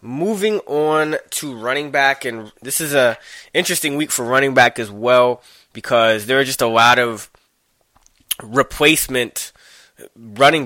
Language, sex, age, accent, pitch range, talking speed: English, male, 20-39, American, 110-130 Hz, 140 wpm